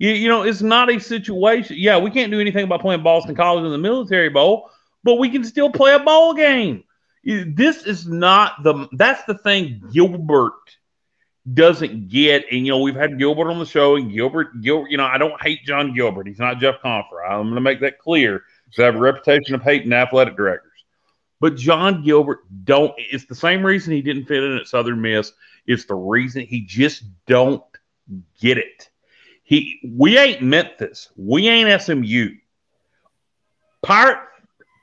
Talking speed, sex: 190 wpm, male